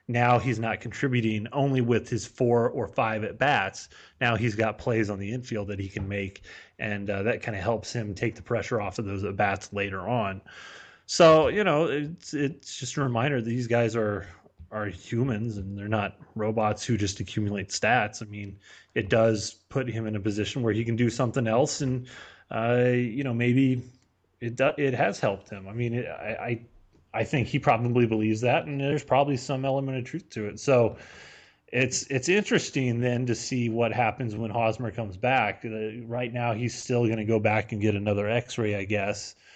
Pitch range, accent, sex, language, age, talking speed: 105-125 Hz, American, male, English, 30-49, 205 wpm